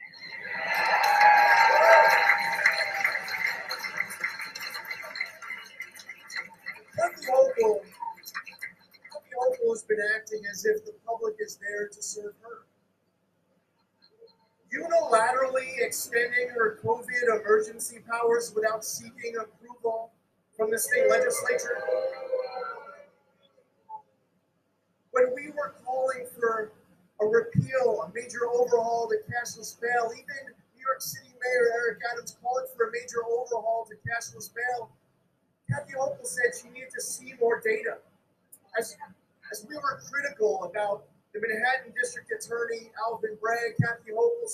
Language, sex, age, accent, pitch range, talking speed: English, male, 40-59, American, 225-300 Hz, 105 wpm